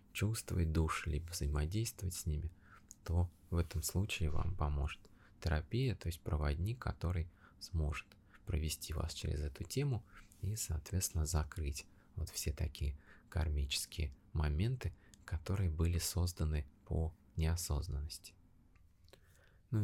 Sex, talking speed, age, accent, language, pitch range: male, 110 wpm, 20-39, native, Russian, 75-95 Hz